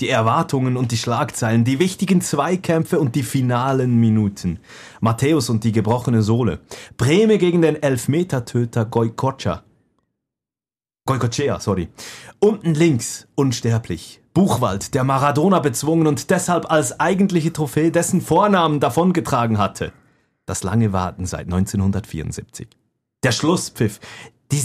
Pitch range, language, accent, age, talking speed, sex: 105-145 Hz, German, German, 30-49, 110 wpm, male